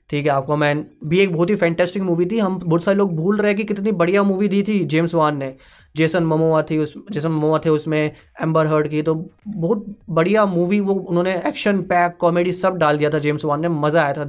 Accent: native